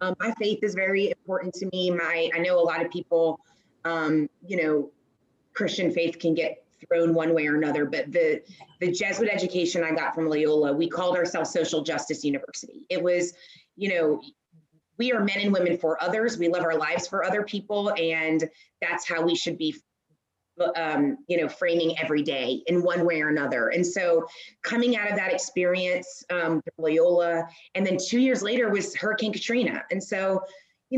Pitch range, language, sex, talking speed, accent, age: 170-220 Hz, English, female, 190 wpm, American, 20-39